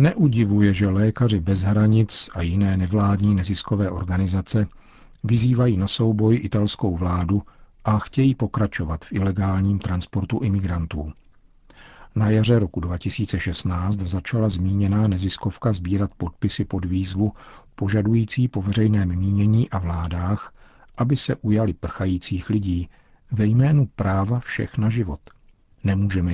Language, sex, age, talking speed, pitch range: Czech, male, 50-69, 115 wpm, 90-110 Hz